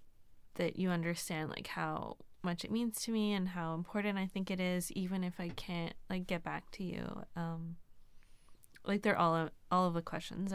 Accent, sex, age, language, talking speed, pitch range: American, female, 20-39, English, 195 wpm, 170-195 Hz